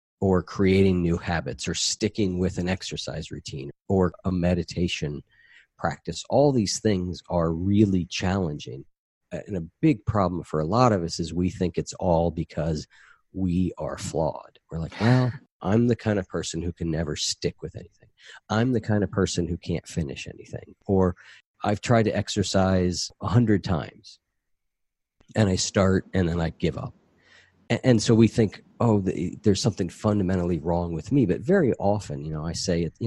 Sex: male